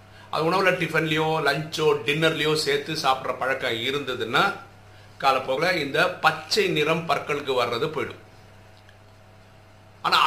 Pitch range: 105-160 Hz